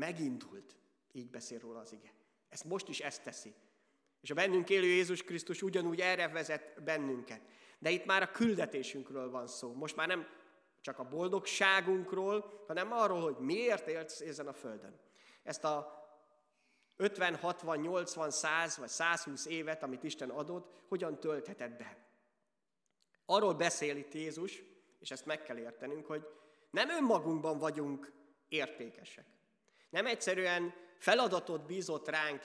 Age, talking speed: 30-49, 140 wpm